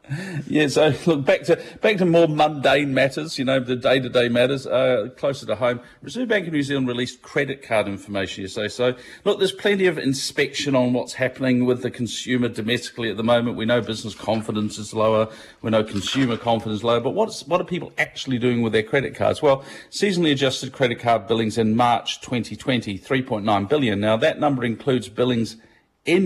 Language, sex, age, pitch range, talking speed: English, male, 40-59, 110-135 Hz, 205 wpm